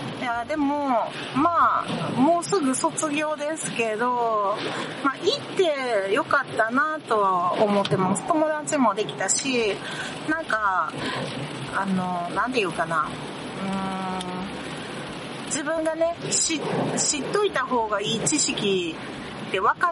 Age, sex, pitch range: 40-59, female, 190-260 Hz